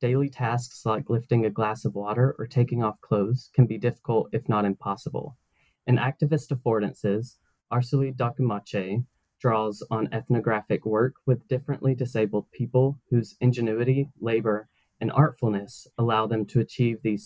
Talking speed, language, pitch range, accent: 145 wpm, English, 110-130 Hz, American